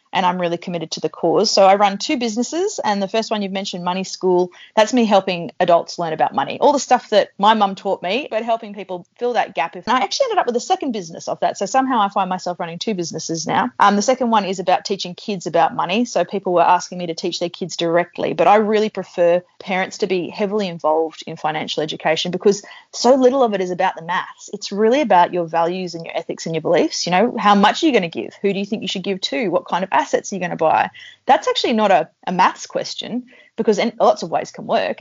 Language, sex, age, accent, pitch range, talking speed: English, female, 30-49, Australian, 180-220 Hz, 260 wpm